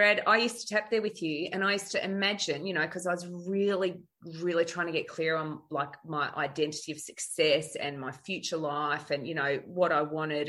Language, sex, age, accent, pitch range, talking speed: English, female, 30-49, Australian, 160-225 Hz, 230 wpm